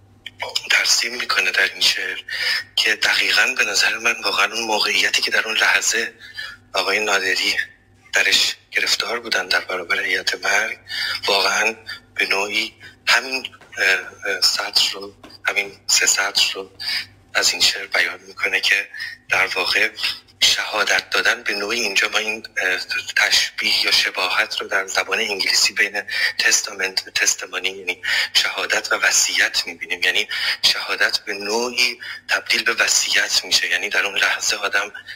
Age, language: 30-49, Persian